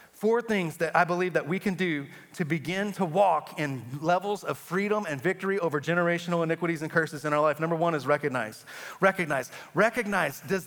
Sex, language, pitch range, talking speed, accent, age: male, English, 170-230 Hz, 190 wpm, American, 30-49